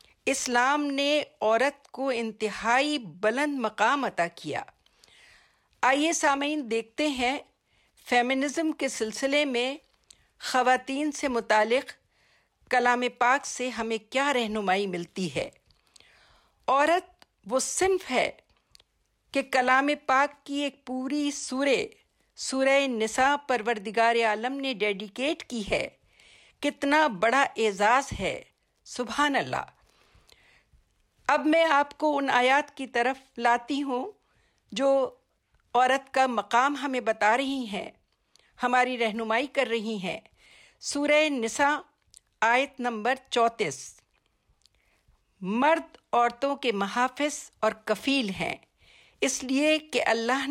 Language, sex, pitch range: Urdu, female, 230-280 Hz